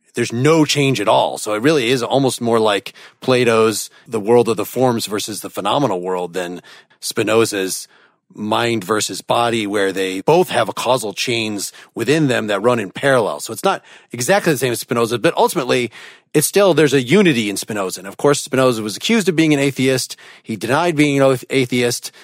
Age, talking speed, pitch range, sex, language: 30-49, 195 wpm, 115-145 Hz, male, English